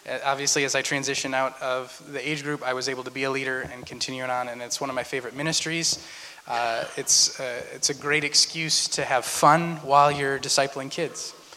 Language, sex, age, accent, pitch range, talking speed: English, male, 20-39, American, 130-155 Hz, 205 wpm